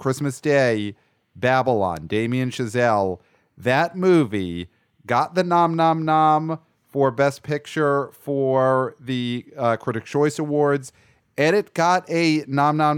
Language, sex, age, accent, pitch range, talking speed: English, male, 40-59, American, 115-150 Hz, 125 wpm